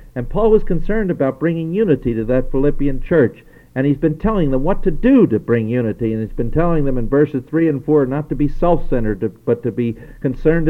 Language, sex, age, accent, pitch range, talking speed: English, male, 50-69, American, 120-160 Hz, 225 wpm